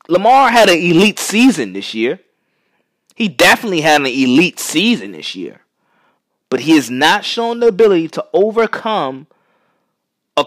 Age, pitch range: 20-39, 150-235 Hz